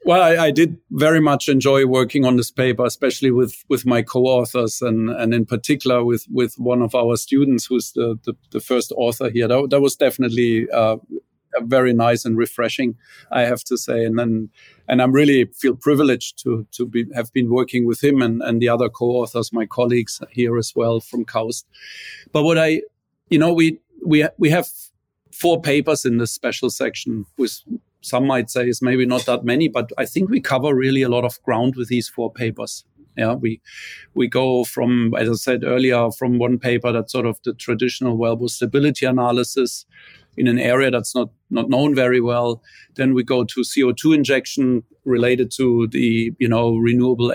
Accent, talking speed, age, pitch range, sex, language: German, 195 wpm, 50-69, 120-130 Hz, male, English